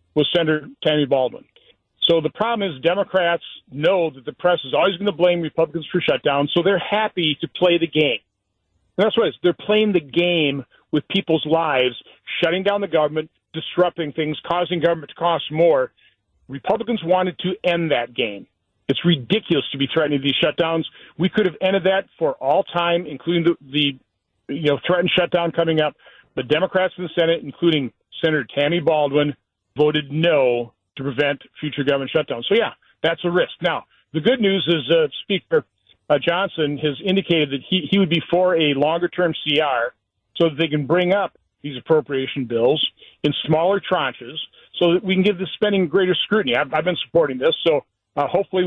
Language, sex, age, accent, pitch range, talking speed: English, male, 50-69, American, 145-180 Hz, 185 wpm